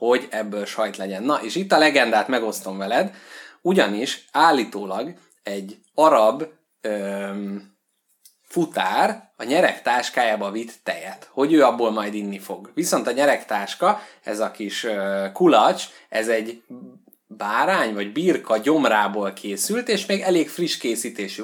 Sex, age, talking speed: male, 20-39, 130 wpm